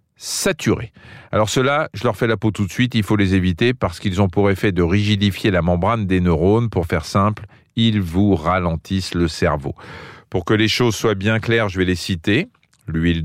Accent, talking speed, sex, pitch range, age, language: French, 210 wpm, male, 90-115 Hz, 40-59, French